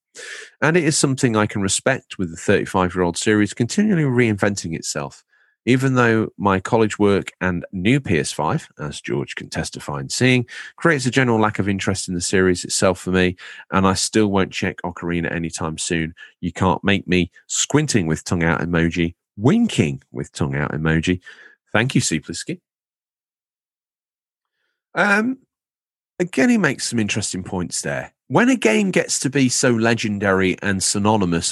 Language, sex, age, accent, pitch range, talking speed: English, male, 40-59, British, 85-125 Hz, 160 wpm